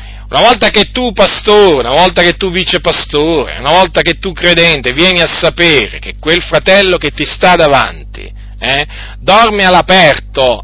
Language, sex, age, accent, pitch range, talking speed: Italian, male, 40-59, native, 135-185 Hz, 165 wpm